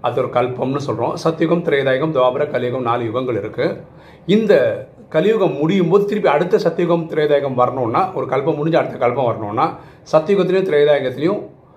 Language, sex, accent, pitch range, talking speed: Tamil, male, native, 125-170 Hz, 145 wpm